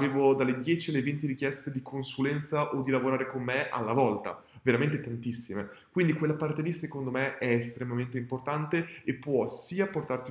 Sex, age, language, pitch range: male, 20-39, Italian, 130-175 Hz